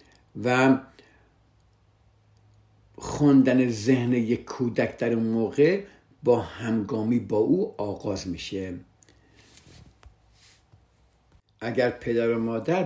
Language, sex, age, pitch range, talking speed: Persian, male, 60-79, 105-135 Hz, 85 wpm